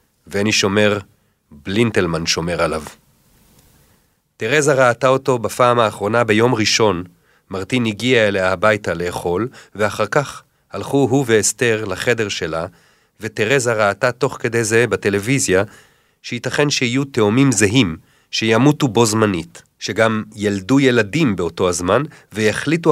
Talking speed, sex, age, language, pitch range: 115 wpm, male, 40-59, Hebrew, 105-135 Hz